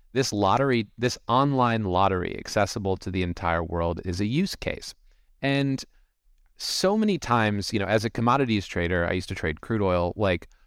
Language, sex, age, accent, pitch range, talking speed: English, male, 30-49, American, 90-110 Hz, 175 wpm